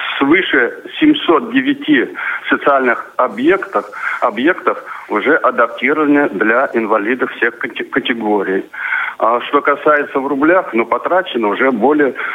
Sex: male